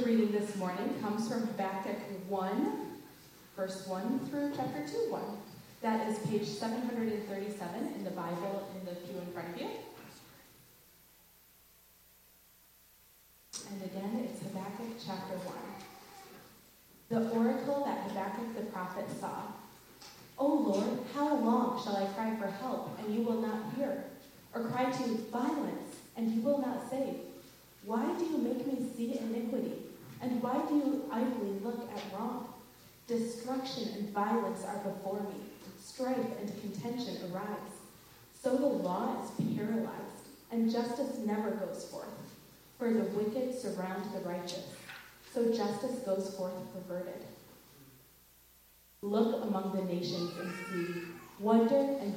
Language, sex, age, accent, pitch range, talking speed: English, female, 30-49, American, 190-245 Hz, 135 wpm